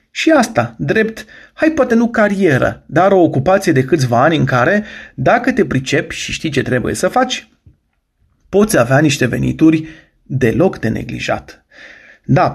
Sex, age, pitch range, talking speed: male, 30-49, 135-205 Hz, 155 wpm